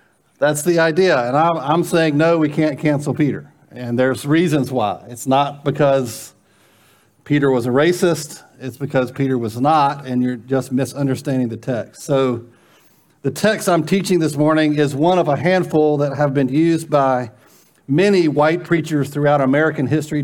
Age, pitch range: 50-69, 130-155 Hz